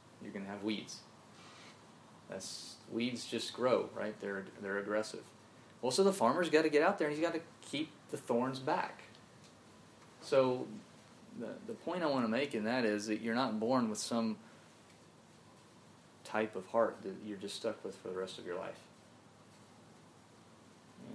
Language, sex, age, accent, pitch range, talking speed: English, male, 30-49, American, 100-115 Hz, 175 wpm